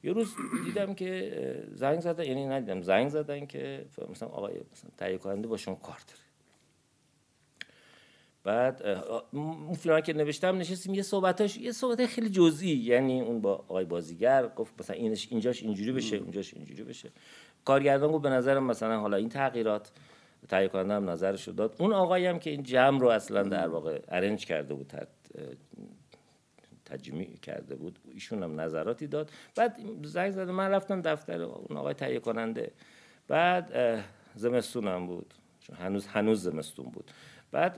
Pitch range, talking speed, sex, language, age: 95-150 Hz, 150 wpm, male, Persian, 50-69